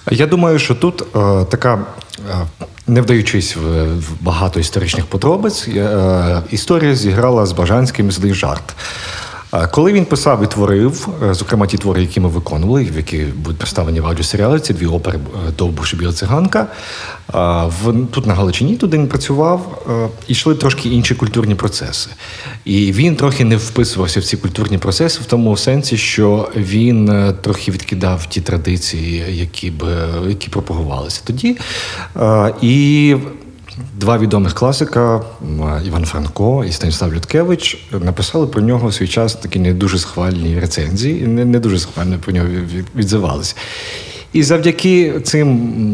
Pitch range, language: 90-120 Hz, Ukrainian